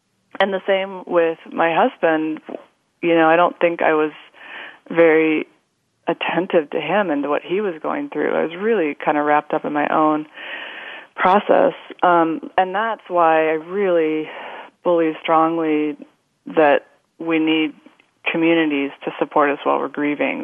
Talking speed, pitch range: 155 wpm, 145-165 Hz